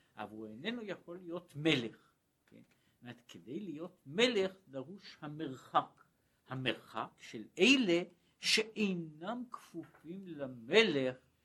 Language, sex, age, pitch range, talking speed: Hebrew, male, 60-79, 130-180 Hz, 100 wpm